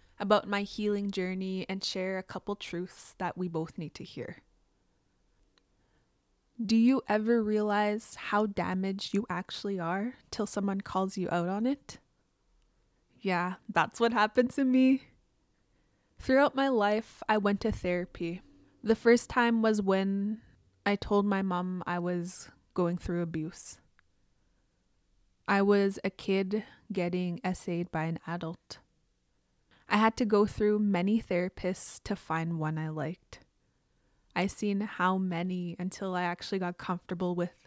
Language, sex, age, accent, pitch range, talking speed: English, female, 20-39, American, 180-215 Hz, 140 wpm